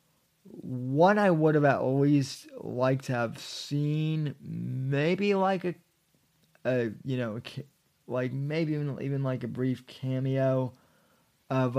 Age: 20-39